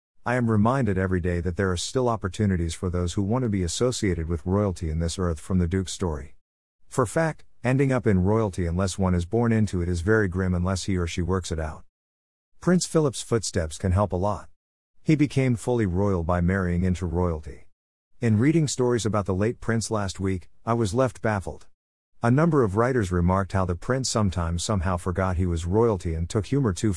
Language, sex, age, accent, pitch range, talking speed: English, male, 50-69, American, 90-115 Hz, 210 wpm